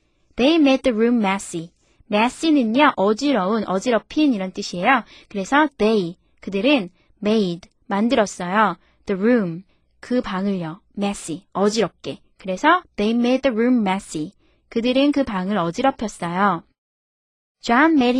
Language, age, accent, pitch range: Korean, 20-39, native, 190-270 Hz